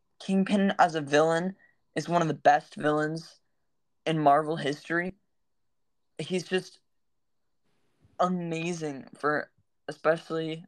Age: 10-29